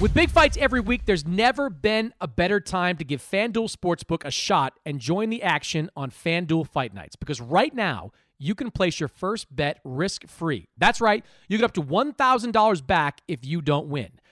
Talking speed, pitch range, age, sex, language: 195 wpm, 155-220 Hz, 40-59, male, English